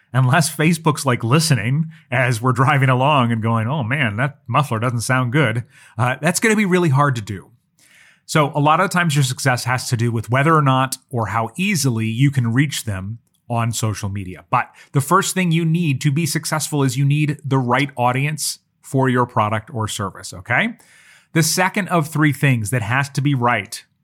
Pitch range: 120-155 Hz